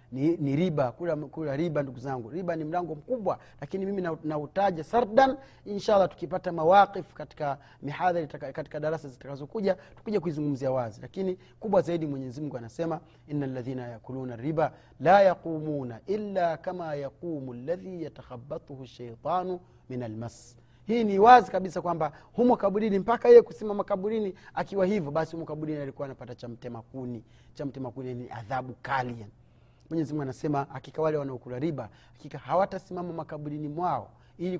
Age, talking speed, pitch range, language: 30-49, 145 wpm, 135-180 Hz, Swahili